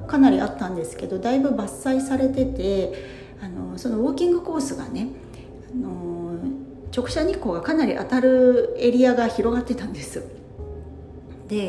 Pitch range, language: 175-265 Hz, Japanese